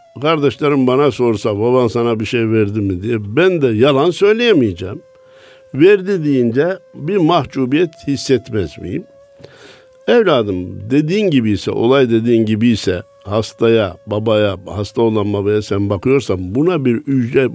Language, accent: Turkish, native